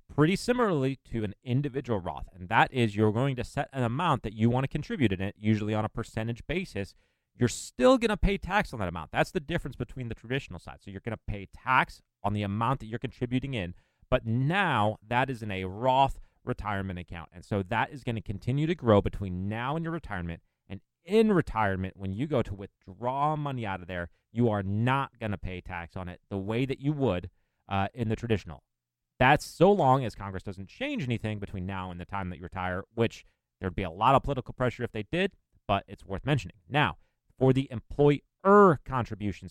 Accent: American